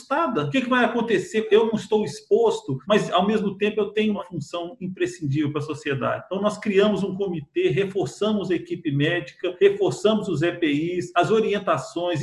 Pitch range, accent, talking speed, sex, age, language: 170-215 Hz, Brazilian, 165 wpm, male, 40-59, Portuguese